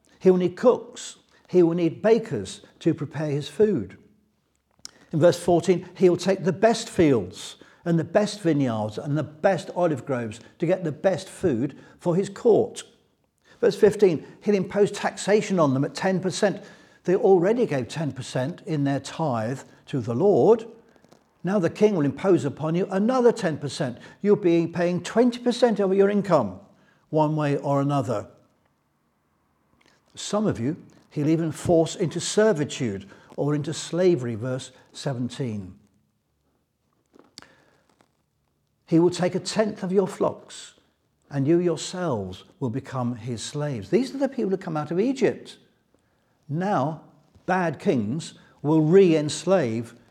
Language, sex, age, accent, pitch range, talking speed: English, male, 60-79, British, 130-190 Hz, 140 wpm